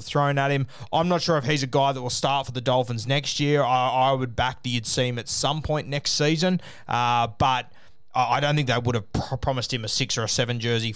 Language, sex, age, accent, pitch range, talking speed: English, male, 20-39, Australian, 115-135 Hz, 265 wpm